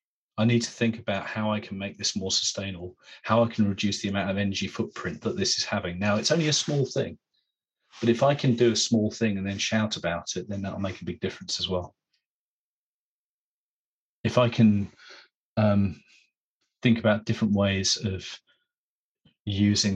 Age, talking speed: 30-49, 185 wpm